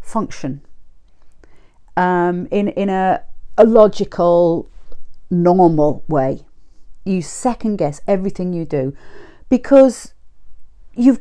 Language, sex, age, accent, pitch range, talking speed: English, female, 40-59, British, 190-280 Hz, 90 wpm